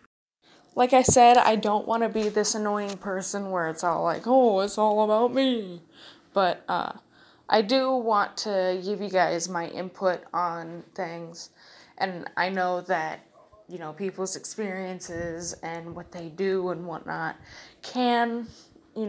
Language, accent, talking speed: English, American, 155 wpm